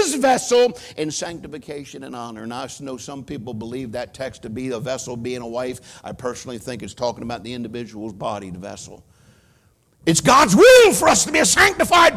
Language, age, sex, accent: English, 50-69, male, American